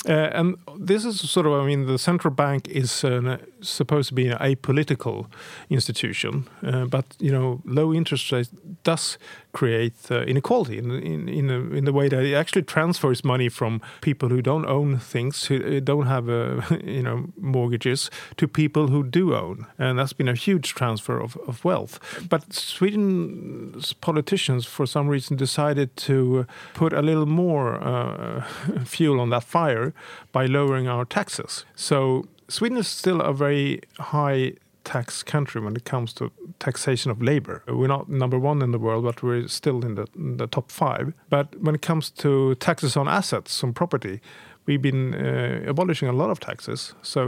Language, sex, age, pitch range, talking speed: English, male, 50-69, 125-155 Hz, 180 wpm